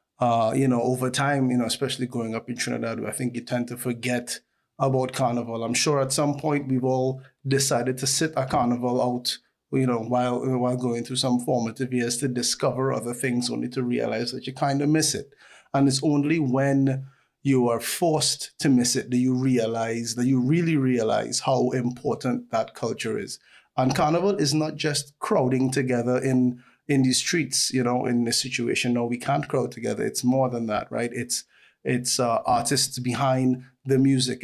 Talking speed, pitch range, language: 190 wpm, 125-135 Hz, English